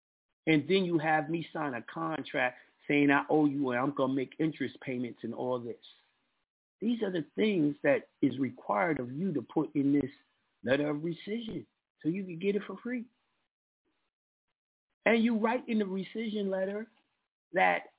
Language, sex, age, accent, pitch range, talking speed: English, male, 50-69, American, 140-200 Hz, 175 wpm